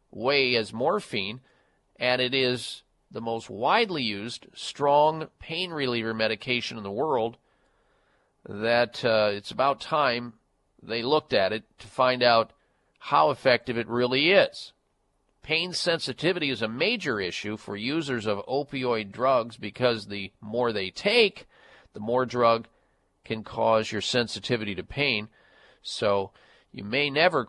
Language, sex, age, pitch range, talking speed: English, male, 50-69, 105-130 Hz, 140 wpm